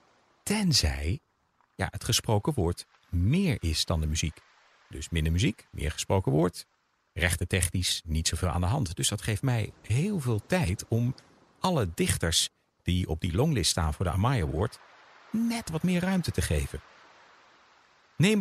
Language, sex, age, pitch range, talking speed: Dutch, male, 50-69, 90-135 Hz, 160 wpm